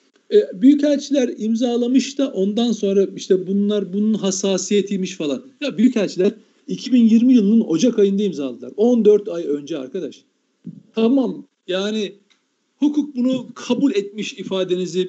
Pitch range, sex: 190-270 Hz, male